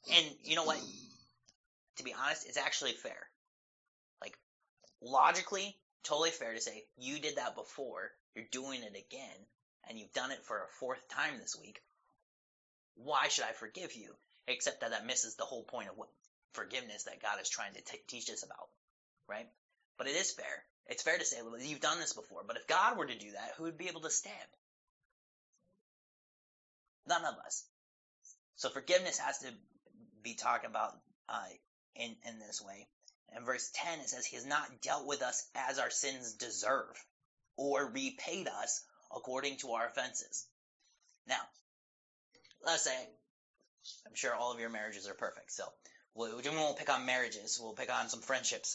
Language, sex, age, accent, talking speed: English, male, 30-49, American, 175 wpm